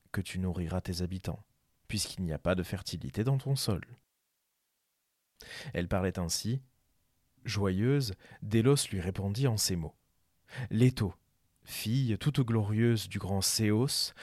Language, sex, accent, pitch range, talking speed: French, male, French, 95-125 Hz, 130 wpm